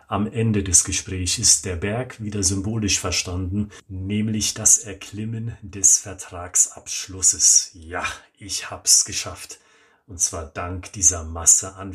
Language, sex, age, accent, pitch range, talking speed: German, male, 40-59, German, 95-115 Hz, 125 wpm